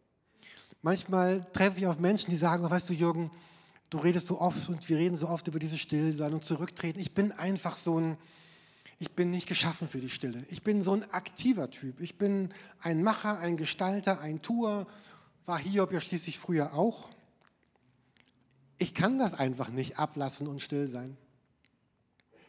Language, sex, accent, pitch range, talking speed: German, male, German, 150-180 Hz, 175 wpm